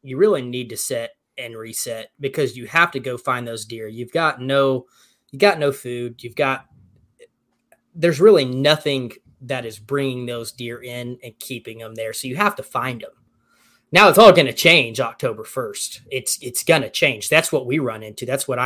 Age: 20-39